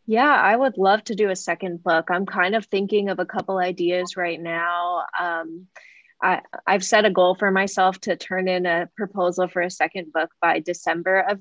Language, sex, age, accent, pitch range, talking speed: English, female, 20-39, American, 175-215 Hz, 205 wpm